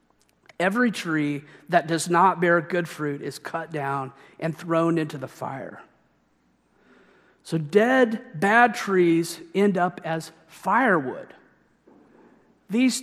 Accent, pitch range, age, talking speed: American, 160-200 Hz, 40-59, 115 wpm